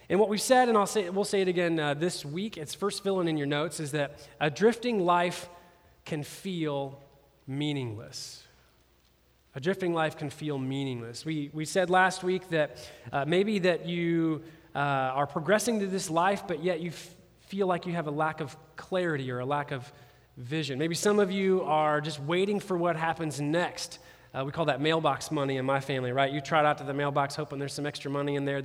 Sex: male